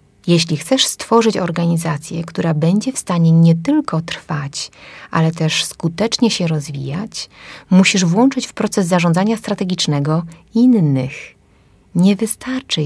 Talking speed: 115 wpm